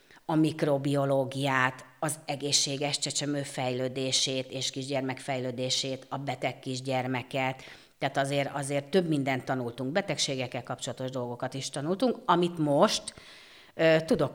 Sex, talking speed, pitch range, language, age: female, 110 wpm, 130-165 Hz, Hungarian, 30-49